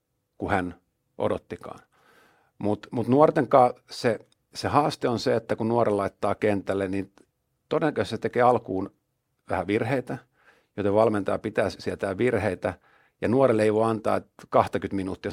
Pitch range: 100-120 Hz